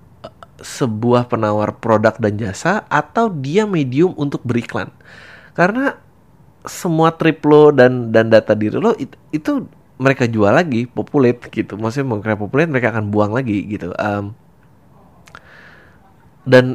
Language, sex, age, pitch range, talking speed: Indonesian, male, 20-39, 110-155 Hz, 125 wpm